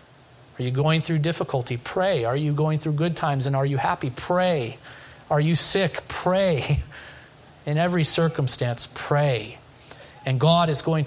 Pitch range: 130-160 Hz